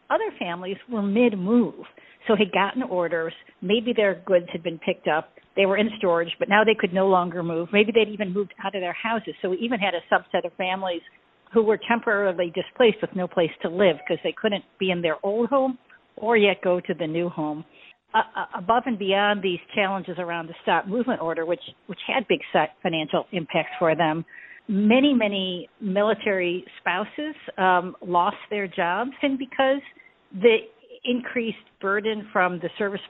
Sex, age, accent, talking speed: female, 50-69, American, 185 wpm